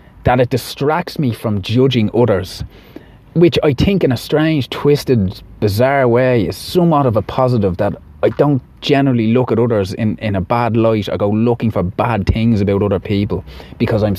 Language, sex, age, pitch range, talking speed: English, male, 30-49, 95-125 Hz, 185 wpm